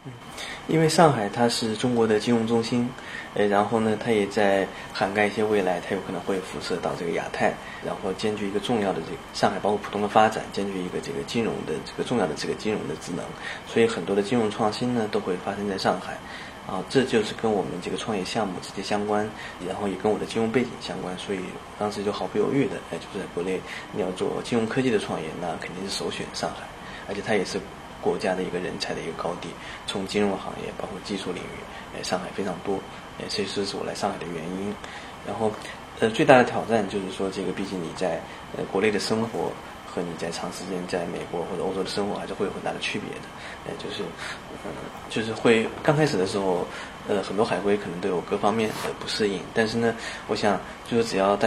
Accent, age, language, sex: native, 20-39, Chinese, male